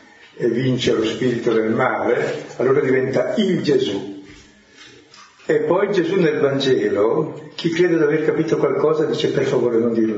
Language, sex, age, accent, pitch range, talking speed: Italian, male, 60-79, native, 115-185 Hz, 155 wpm